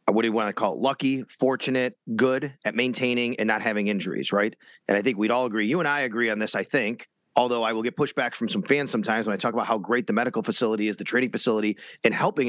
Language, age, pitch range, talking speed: English, 30-49, 115-150 Hz, 265 wpm